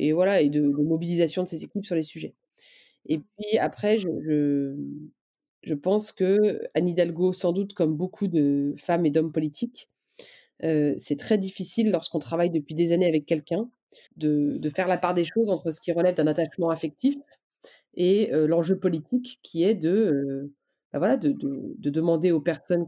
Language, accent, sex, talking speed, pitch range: French, French, female, 185 wpm, 160-205 Hz